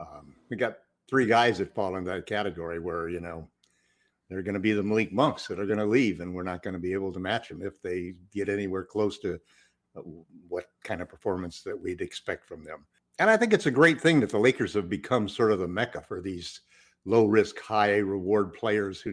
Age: 60-79